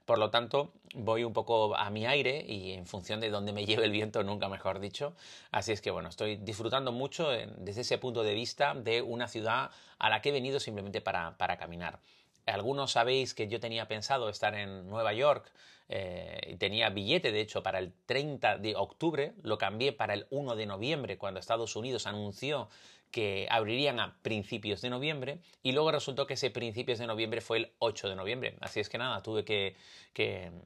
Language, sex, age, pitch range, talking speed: Spanish, male, 30-49, 105-130 Hz, 200 wpm